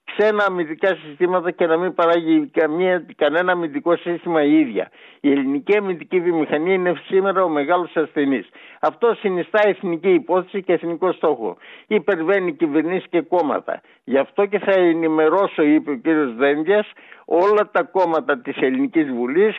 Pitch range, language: 150-195 Hz, Greek